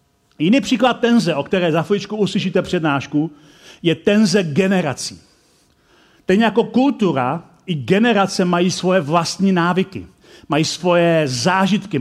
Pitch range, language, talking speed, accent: 160-195 Hz, Czech, 120 wpm, native